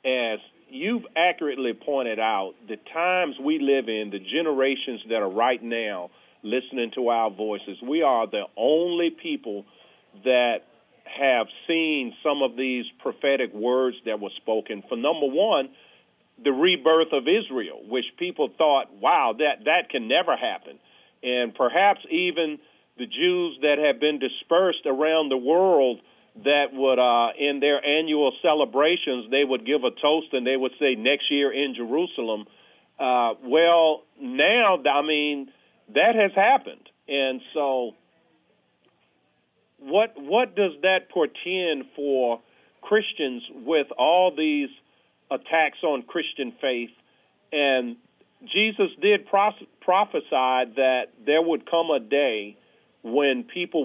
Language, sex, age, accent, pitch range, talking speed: English, male, 40-59, American, 125-175 Hz, 135 wpm